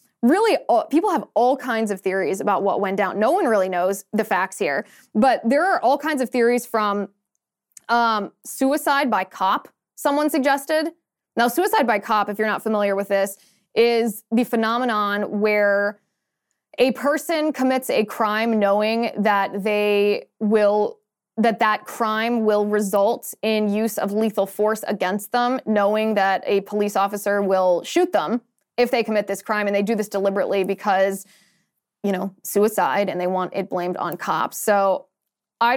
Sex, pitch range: female, 200-245 Hz